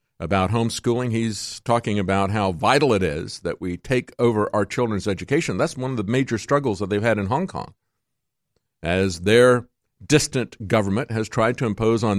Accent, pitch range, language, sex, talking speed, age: American, 105-140 Hz, English, male, 180 wpm, 50-69